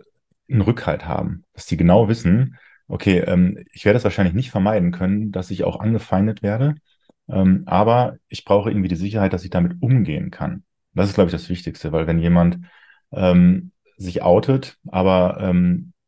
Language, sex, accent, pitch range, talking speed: German, male, German, 85-100 Hz, 175 wpm